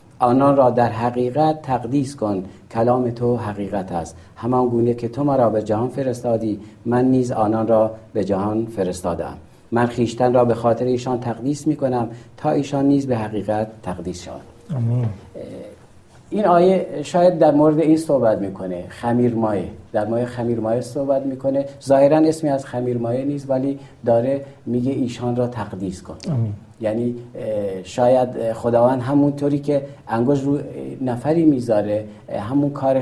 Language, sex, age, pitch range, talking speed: Persian, male, 50-69, 110-135 Hz, 145 wpm